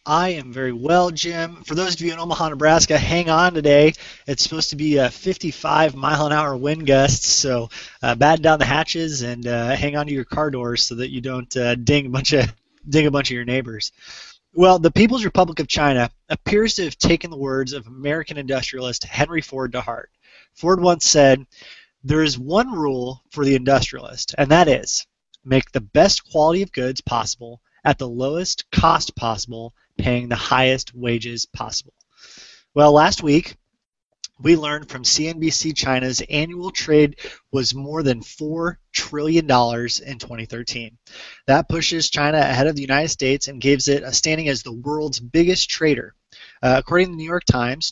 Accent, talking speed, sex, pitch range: American, 180 wpm, male, 125-155 Hz